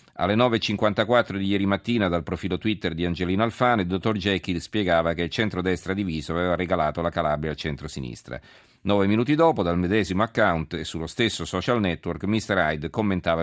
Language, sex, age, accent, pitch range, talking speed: Italian, male, 40-59, native, 85-105 Hz, 175 wpm